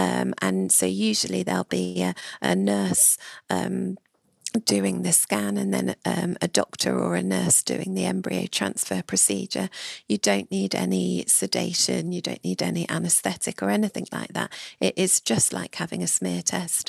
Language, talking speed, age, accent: English, 165 wpm, 40-59, British